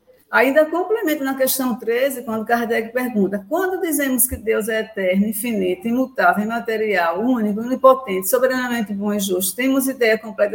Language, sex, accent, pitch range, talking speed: Portuguese, female, Brazilian, 205-275 Hz, 150 wpm